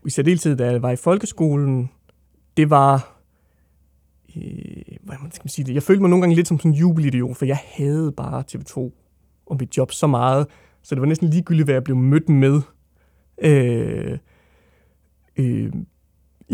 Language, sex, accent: Danish, male, native